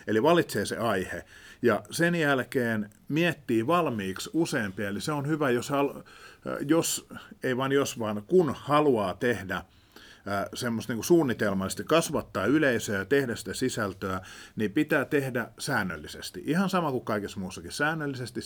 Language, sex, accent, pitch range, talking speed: Finnish, male, native, 105-140 Hz, 140 wpm